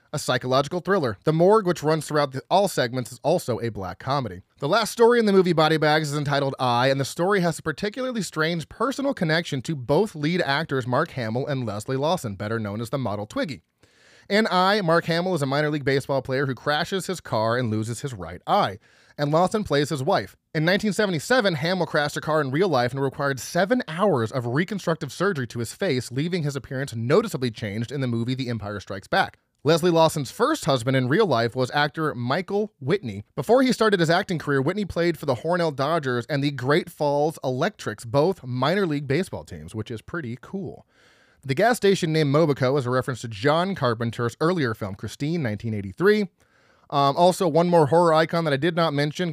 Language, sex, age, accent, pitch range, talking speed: English, male, 30-49, American, 125-170 Hz, 205 wpm